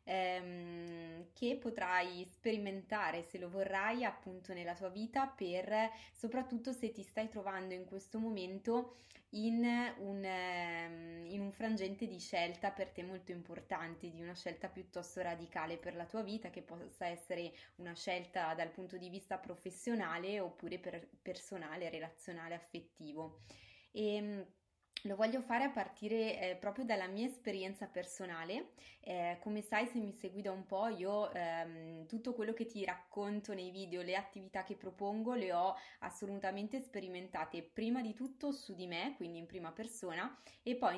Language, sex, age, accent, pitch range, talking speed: Italian, female, 20-39, native, 175-215 Hz, 150 wpm